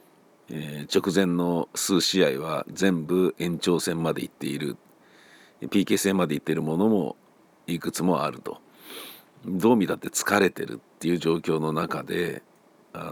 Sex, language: male, Japanese